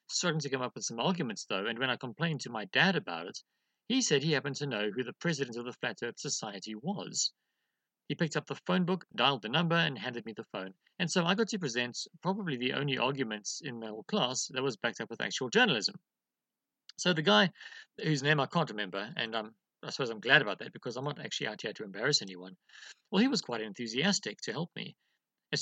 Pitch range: 120-190 Hz